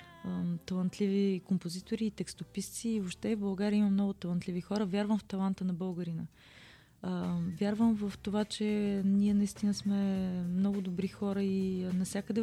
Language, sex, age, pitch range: Bulgarian, female, 20-39, 190-225 Hz